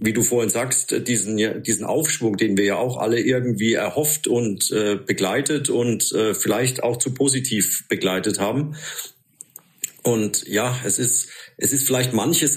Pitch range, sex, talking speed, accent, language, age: 105-125 Hz, male, 160 wpm, German, German, 50-69